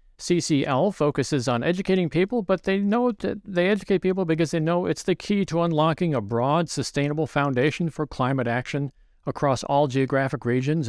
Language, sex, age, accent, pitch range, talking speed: English, male, 50-69, American, 125-175 Hz, 170 wpm